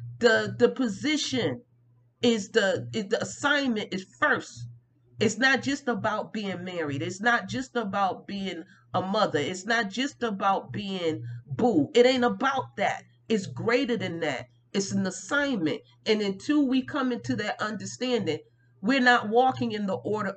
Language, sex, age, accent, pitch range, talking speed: English, female, 40-59, American, 175-250 Hz, 155 wpm